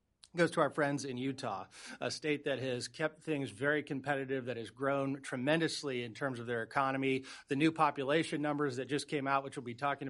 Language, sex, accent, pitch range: English, male, American, 130-150 Hz